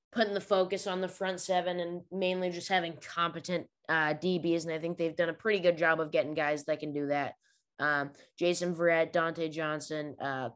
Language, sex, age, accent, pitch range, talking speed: English, female, 20-39, American, 160-185 Hz, 205 wpm